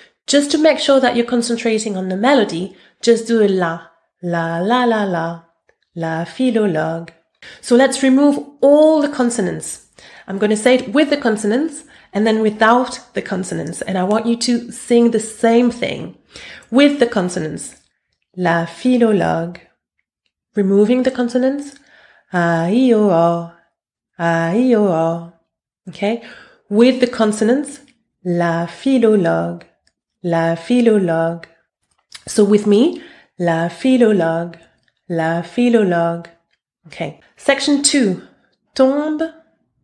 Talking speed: 125 wpm